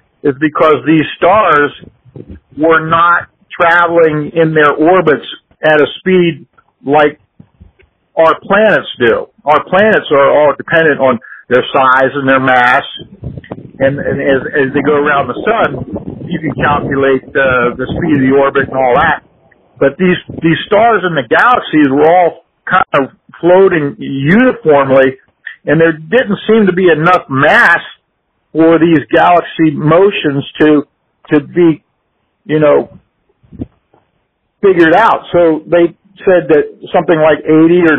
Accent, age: American, 50-69